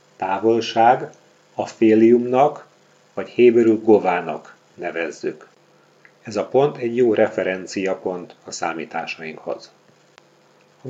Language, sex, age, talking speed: Hungarian, male, 40-59, 90 wpm